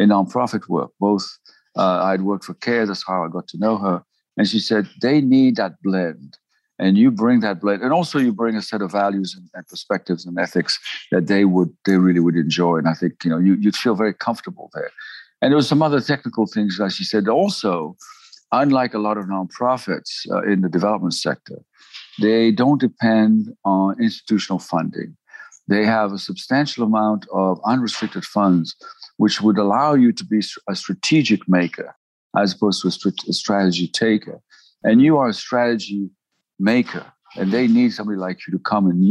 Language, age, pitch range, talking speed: English, 60-79, 95-125 Hz, 195 wpm